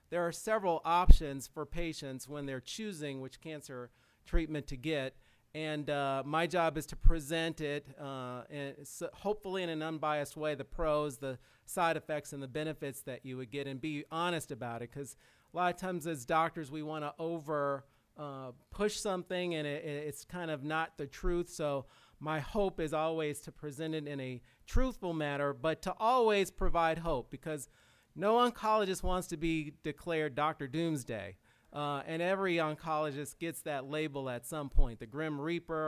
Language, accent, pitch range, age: English, American, 145-175 Hz, 40-59